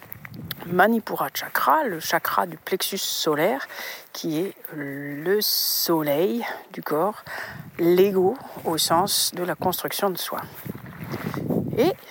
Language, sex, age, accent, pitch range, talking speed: French, female, 50-69, French, 170-240 Hz, 110 wpm